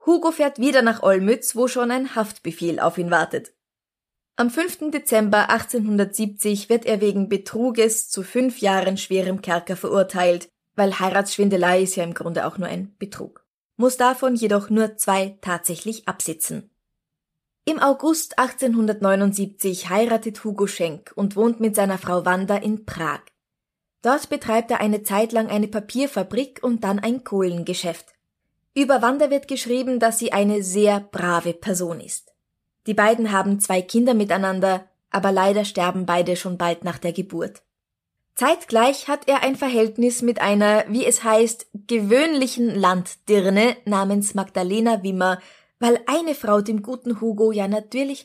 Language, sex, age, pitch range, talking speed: German, female, 20-39, 190-240 Hz, 145 wpm